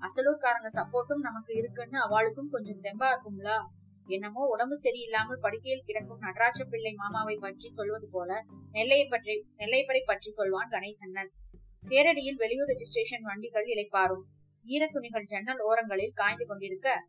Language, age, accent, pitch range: Tamil, 20-39, native, 200-260 Hz